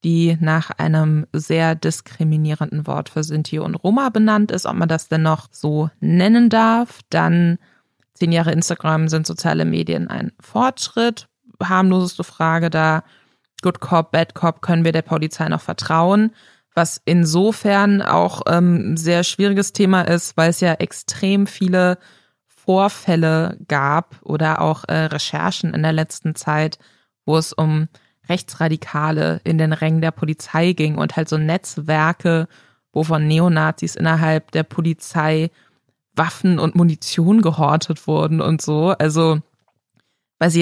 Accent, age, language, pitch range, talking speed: German, 20-39, German, 155-175 Hz, 140 wpm